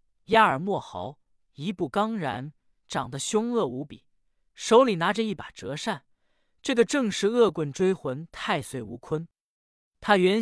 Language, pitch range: Chinese, 135-200 Hz